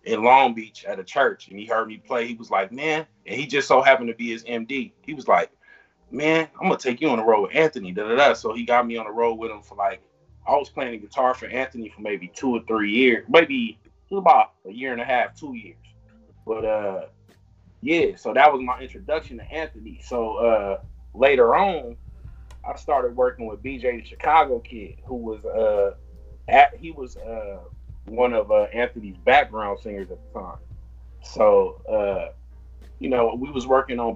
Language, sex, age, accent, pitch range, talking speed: English, male, 30-49, American, 105-130 Hz, 210 wpm